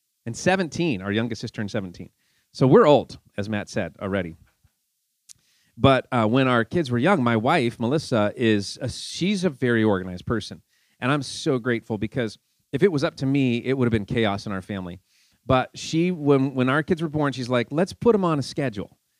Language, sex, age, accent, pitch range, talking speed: English, male, 30-49, American, 110-150 Hz, 205 wpm